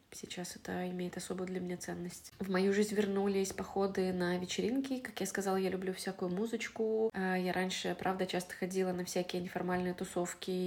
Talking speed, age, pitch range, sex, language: 170 wpm, 20-39, 180-195 Hz, female, Russian